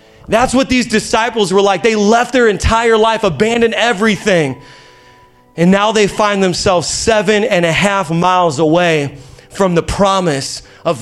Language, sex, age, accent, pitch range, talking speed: English, male, 30-49, American, 150-200 Hz, 150 wpm